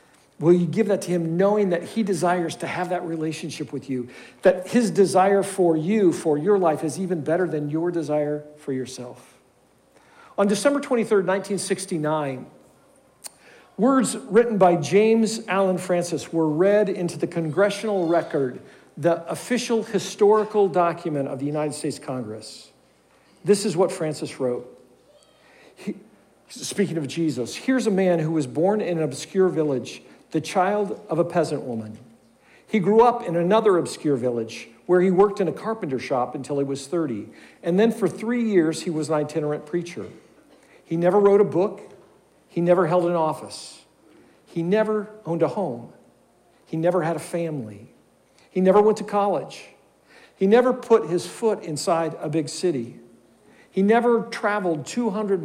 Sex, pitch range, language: male, 155-200 Hz, English